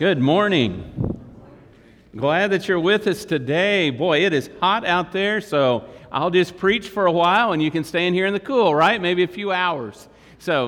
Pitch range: 155-210 Hz